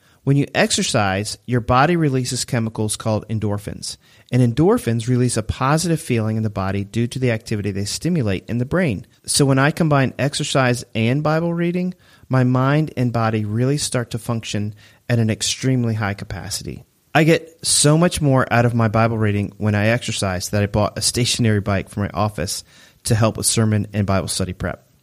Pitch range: 105-130 Hz